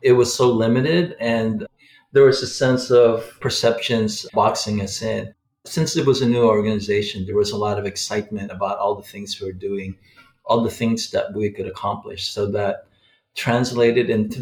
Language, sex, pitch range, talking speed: English, male, 100-120 Hz, 185 wpm